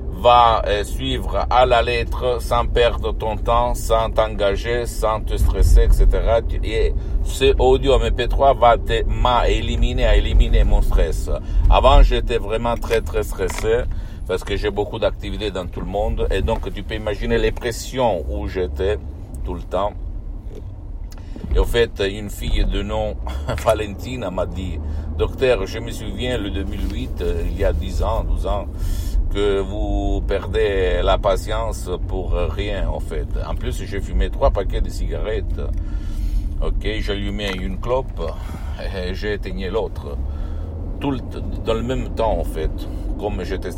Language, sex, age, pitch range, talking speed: Italian, male, 60-79, 80-100 Hz, 150 wpm